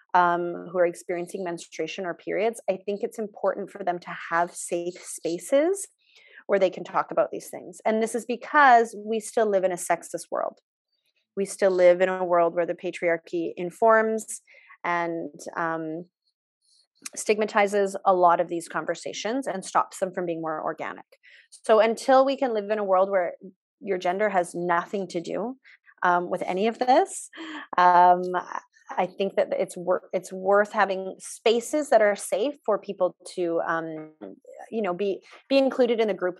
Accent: American